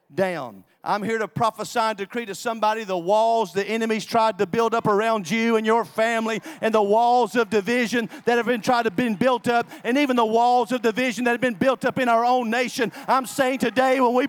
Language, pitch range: English, 210-270 Hz